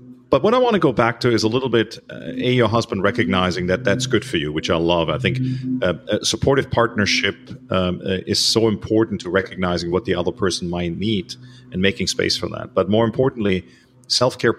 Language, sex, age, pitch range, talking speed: English, male, 40-59, 100-125 Hz, 220 wpm